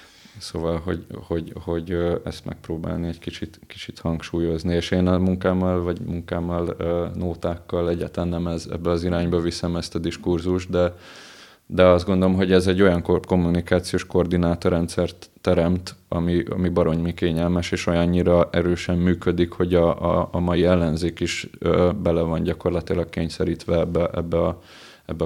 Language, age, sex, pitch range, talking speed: Hungarian, 20-39, male, 85-90 Hz, 145 wpm